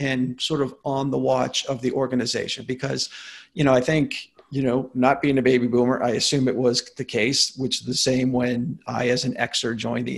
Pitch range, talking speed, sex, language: 125-150 Hz, 225 wpm, male, English